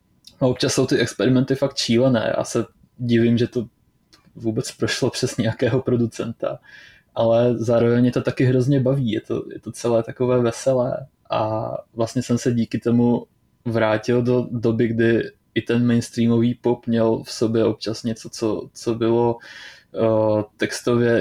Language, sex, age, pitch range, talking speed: Czech, male, 20-39, 115-125 Hz, 145 wpm